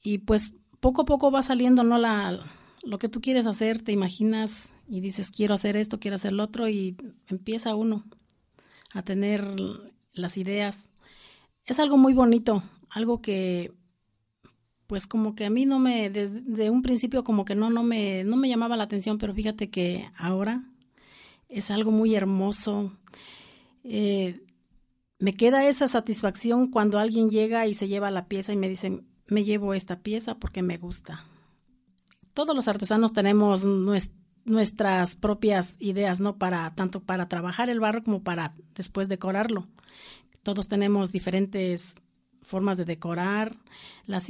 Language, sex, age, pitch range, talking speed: Spanish, female, 40-59, 190-225 Hz, 155 wpm